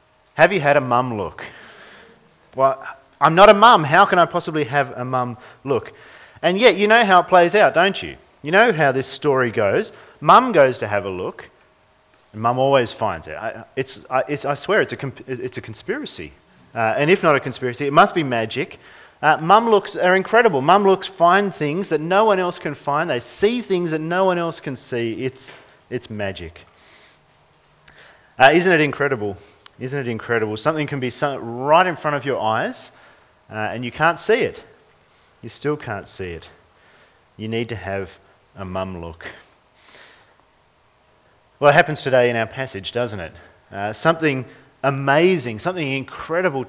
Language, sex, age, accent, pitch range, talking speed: English, male, 40-59, Australian, 110-160 Hz, 185 wpm